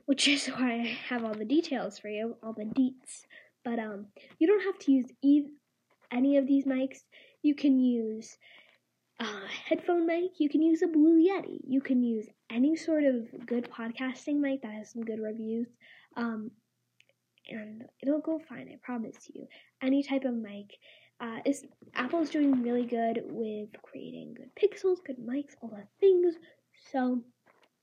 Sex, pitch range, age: female, 230-290 Hz, 10-29